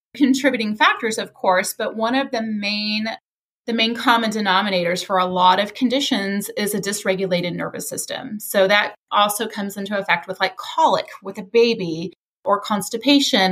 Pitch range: 180-215 Hz